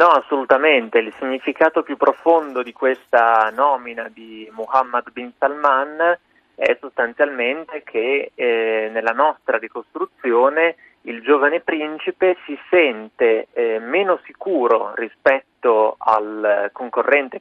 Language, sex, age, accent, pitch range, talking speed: Italian, male, 30-49, native, 125-185 Hz, 105 wpm